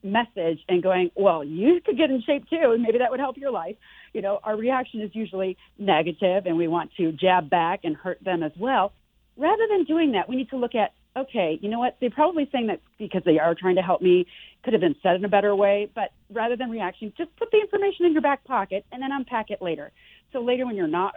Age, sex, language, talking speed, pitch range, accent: 40-59, female, English, 250 wpm, 175-265 Hz, American